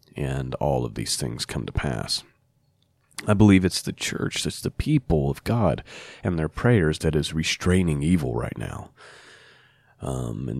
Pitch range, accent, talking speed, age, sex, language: 75-100 Hz, American, 165 wpm, 30-49, male, English